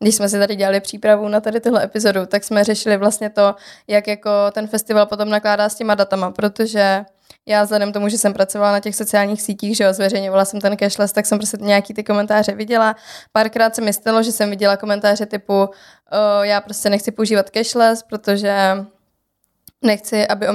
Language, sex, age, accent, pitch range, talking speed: Czech, female, 20-39, native, 205-225 Hz, 190 wpm